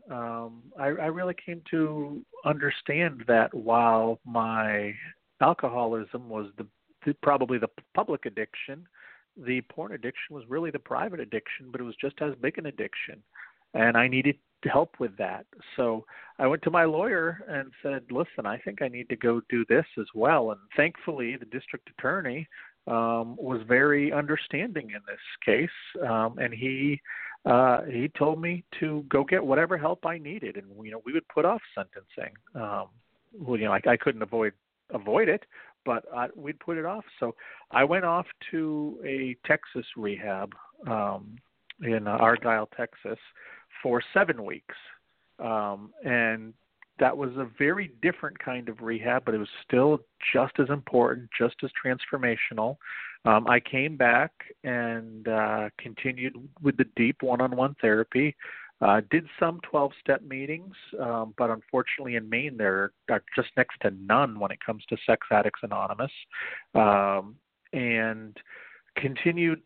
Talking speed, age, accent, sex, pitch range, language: 160 wpm, 40-59, American, male, 115-150 Hz, English